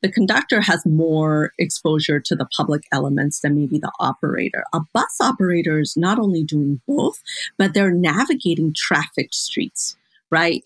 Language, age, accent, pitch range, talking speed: English, 40-59, American, 155-200 Hz, 150 wpm